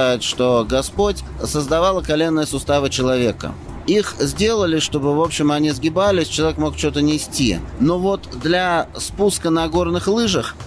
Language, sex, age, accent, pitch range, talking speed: Russian, male, 30-49, native, 135-165 Hz, 135 wpm